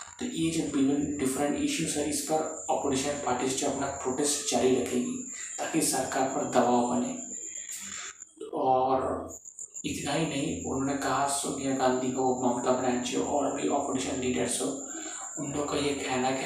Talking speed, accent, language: 155 wpm, native, Hindi